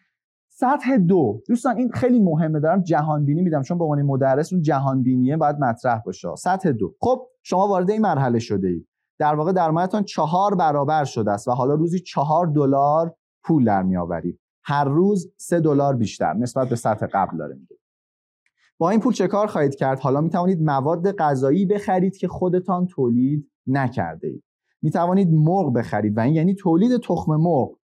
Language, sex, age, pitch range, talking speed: Persian, male, 30-49, 120-175 Hz, 170 wpm